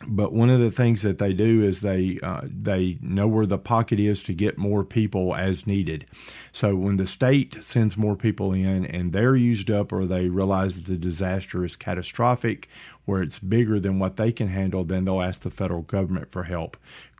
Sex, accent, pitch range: male, American, 95-110 Hz